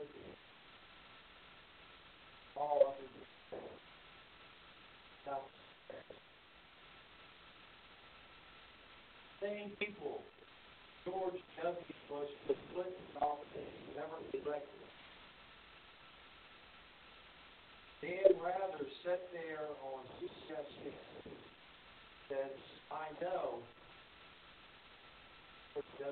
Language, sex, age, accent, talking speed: English, male, 60-79, American, 55 wpm